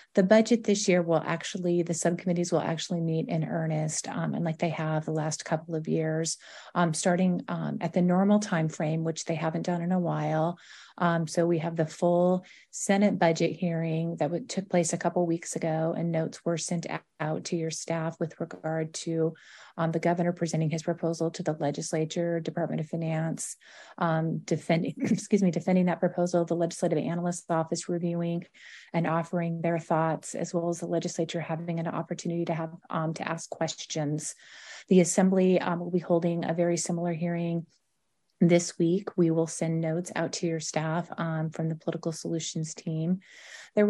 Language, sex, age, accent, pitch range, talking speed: English, female, 30-49, American, 160-175 Hz, 185 wpm